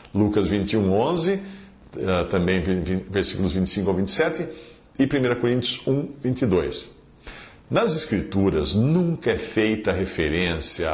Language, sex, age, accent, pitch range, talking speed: English, male, 50-69, Brazilian, 90-125 Hz, 100 wpm